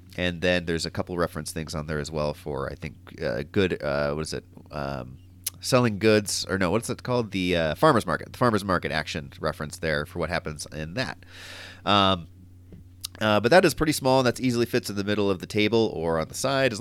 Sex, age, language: male, 30-49, English